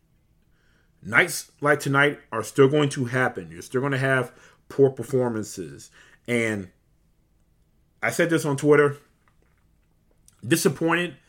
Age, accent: 30-49, American